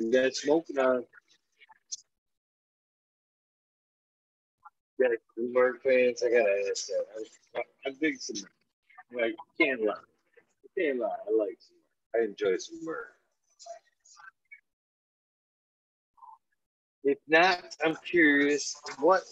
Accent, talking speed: American, 100 wpm